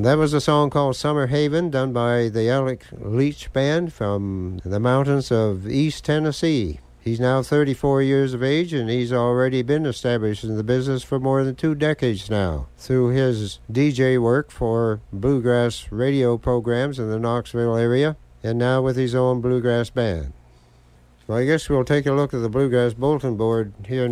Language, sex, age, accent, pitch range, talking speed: English, male, 60-79, American, 115-140 Hz, 175 wpm